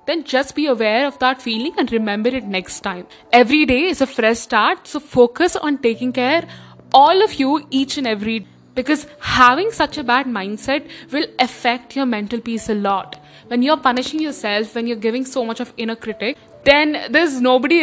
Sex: female